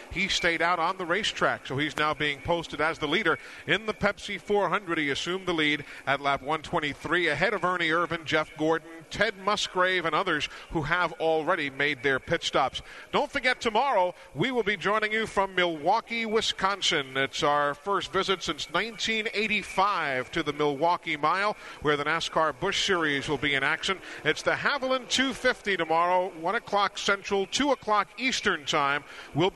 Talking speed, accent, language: 175 wpm, American, English